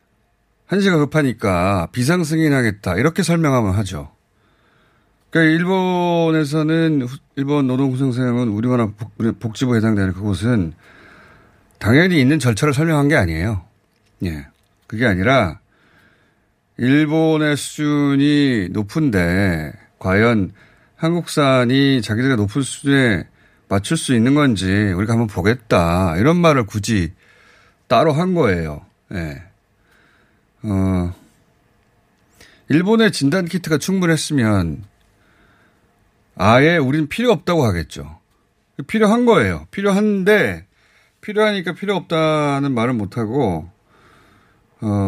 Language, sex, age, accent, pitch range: Korean, male, 40-59, native, 100-150 Hz